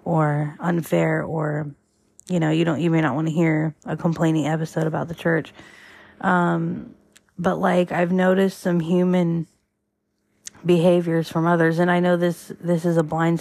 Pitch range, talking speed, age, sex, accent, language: 155-175 Hz, 165 wpm, 20-39, female, American, English